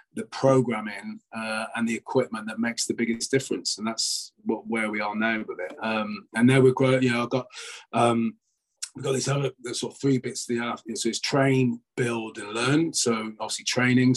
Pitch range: 115-135 Hz